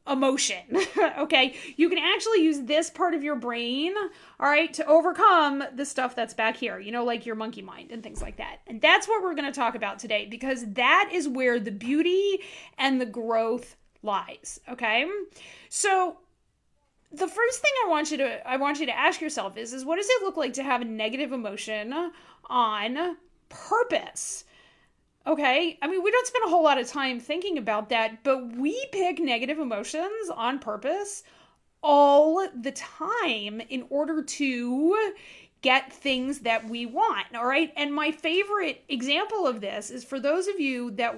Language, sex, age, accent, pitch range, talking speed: English, female, 30-49, American, 240-335 Hz, 180 wpm